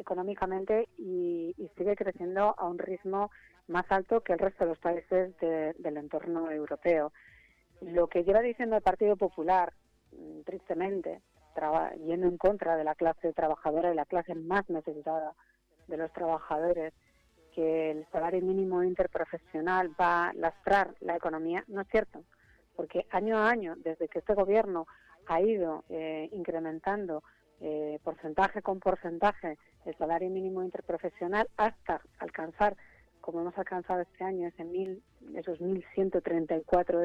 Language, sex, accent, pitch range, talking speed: Spanish, female, Spanish, 165-200 Hz, 135 wpm